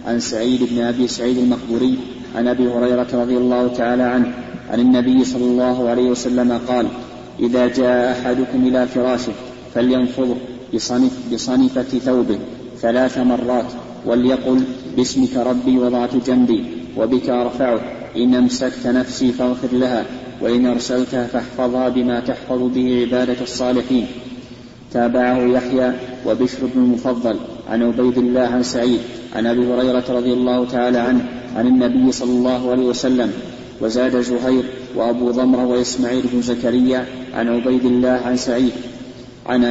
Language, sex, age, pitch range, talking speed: Arabic, male, 30-49, 120-125 Hz, 130 wpm